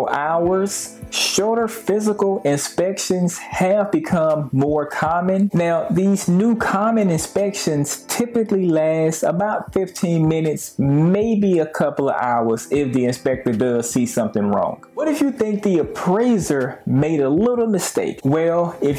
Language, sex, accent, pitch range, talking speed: English, male, American, 140-205 Hz, 130 wpm